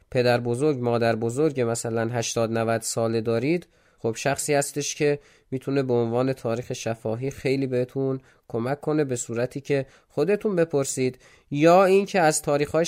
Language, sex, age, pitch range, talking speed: Persian, male, 20-39, 115-150 Hz, 145 wpm